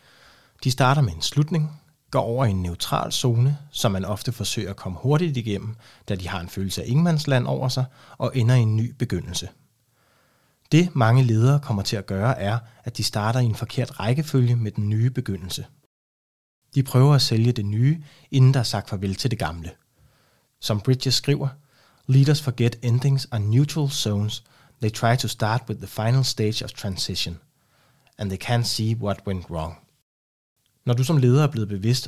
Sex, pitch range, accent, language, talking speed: male, 105-135 Hz, native, Danish, 185 wpm